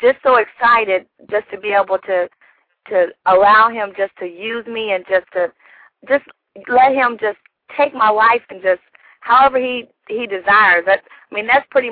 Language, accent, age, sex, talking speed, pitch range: English, American, 40-59, female, 180 wpm, 185-215 Hz